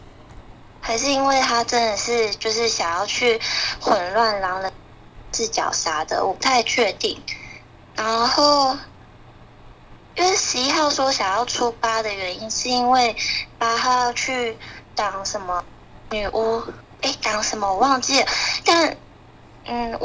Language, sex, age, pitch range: Chinese, female, 10-29, 220-260 Hz